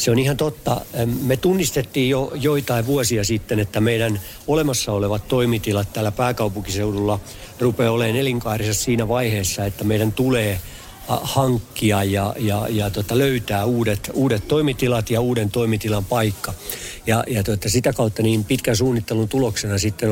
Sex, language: male, Finnish